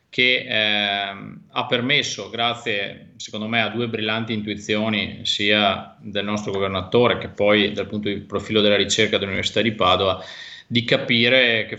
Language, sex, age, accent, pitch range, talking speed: Italian, male, 30-49, native, 105-120 Hz, 150 wpm